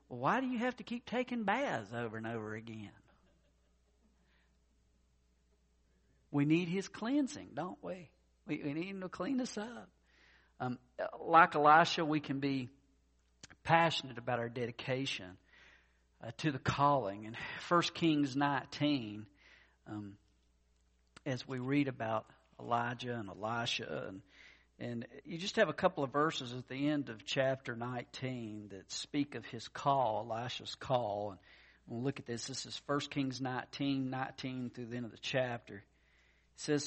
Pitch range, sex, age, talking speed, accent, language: 105-145 Hz, male, 50-69, 150 wpm, American, English